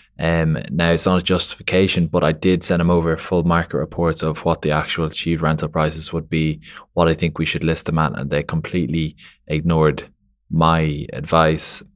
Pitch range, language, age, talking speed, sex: 80-85 Hz, English, 20-39, 190 wpm, male